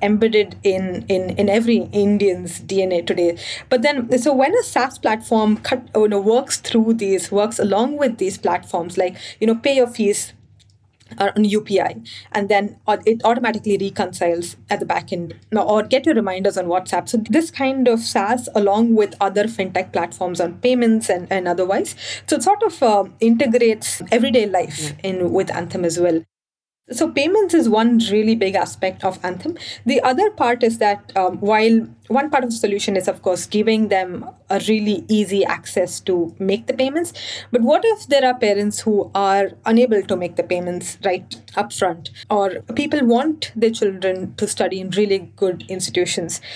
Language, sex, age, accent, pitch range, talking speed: English, female, 30-49, Indian, 185-230 Hz, 180 wpm